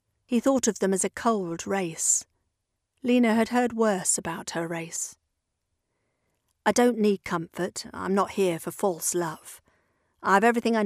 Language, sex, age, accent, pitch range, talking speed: English, female, 40-59, British, 165-225 Hz, 160 wpm